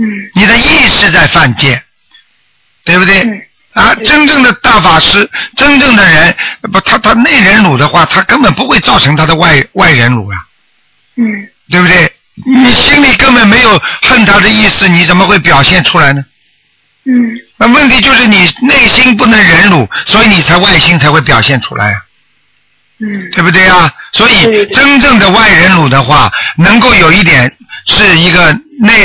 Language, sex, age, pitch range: Chinese, male, 50-69, 155-225 Hz